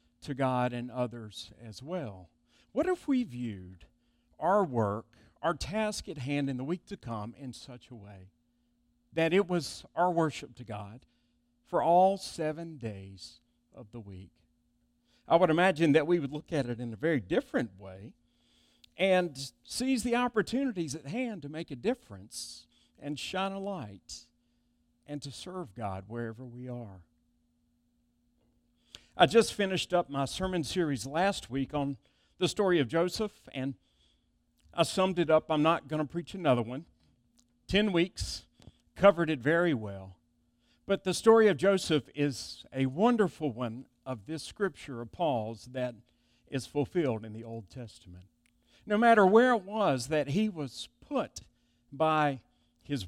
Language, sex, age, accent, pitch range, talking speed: English, male, 50-69, American, 110-170 Hz, 155 wpm